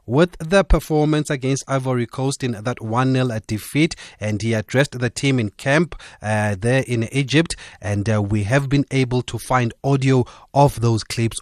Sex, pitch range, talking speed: male, 115-130 Hz, 175 wpm